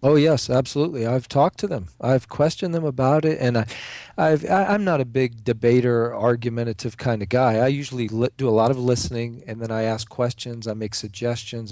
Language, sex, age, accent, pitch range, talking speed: English, male, 40-59, American, 115-140 Hz, 215 wpm